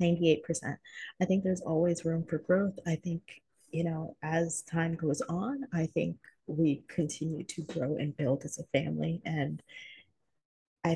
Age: 30-49